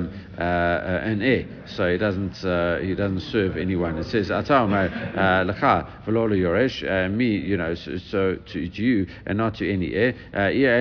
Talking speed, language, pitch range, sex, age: 165 wpm, English, 90-110 Hz, male, 50-69